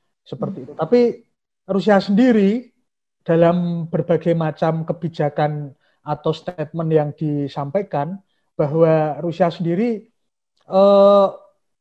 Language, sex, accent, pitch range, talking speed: Indonesian, male, native, 150-180 Hz, 85 wpm